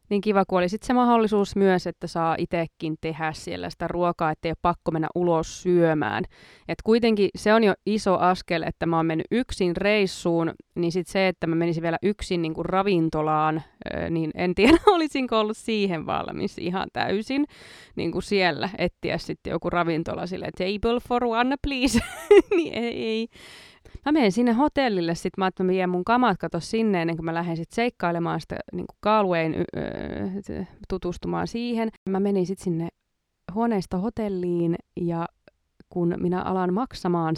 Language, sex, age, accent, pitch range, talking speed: Finnish, female, 20-39, native, 165-210 Hz, 165 wpm